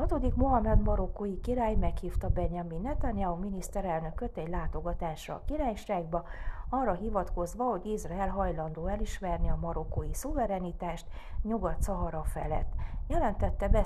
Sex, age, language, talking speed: female, 40-59, Hungarian, 110 wpm